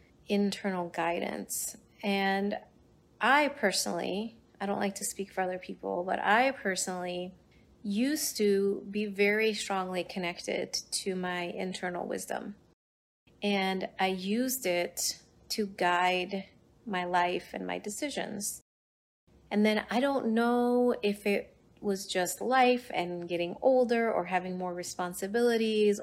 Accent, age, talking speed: American, 30-49, 125 wpm